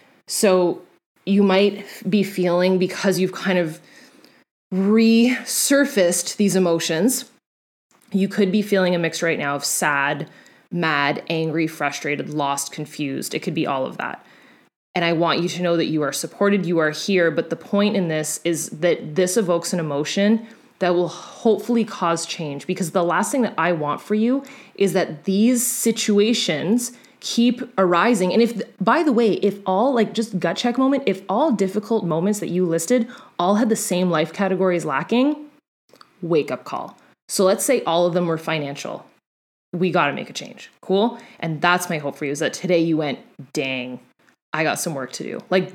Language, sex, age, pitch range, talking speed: English, female, 20-39, 165-215 Hz, 185 wpm